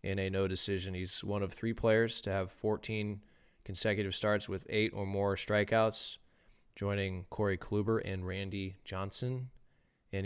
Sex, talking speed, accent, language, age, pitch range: male, 150 wpm, American, English, 20-39, 95-110 Hz